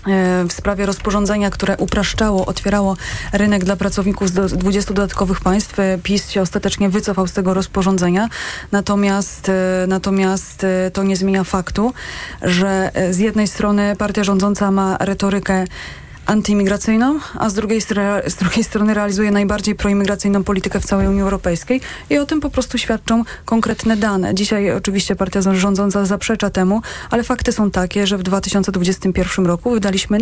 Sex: female